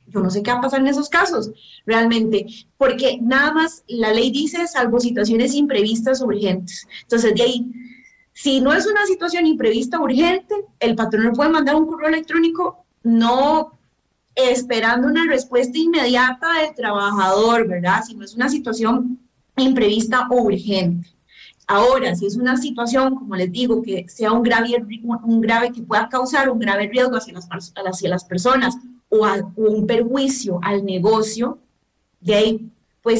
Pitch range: 210-270 Hz